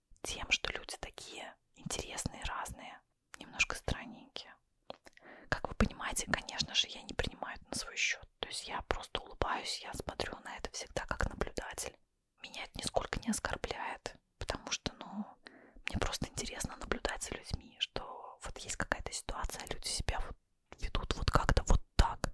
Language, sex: Russian, female